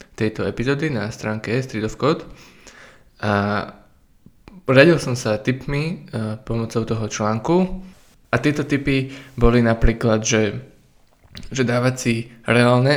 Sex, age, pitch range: male, 20-39, 110-140 Hz